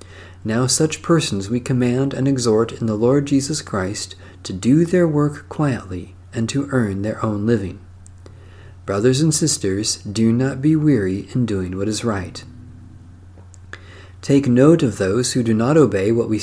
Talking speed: 165 wpm